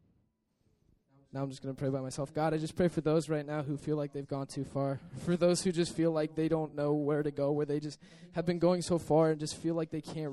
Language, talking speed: English, 280 wpm